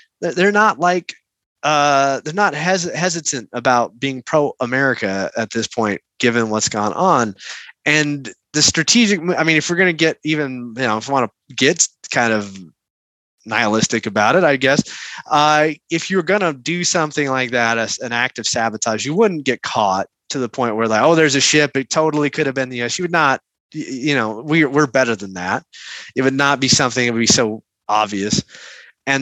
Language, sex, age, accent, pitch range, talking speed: English, male, 20-39, American, 115-155 Hz, 195 wpm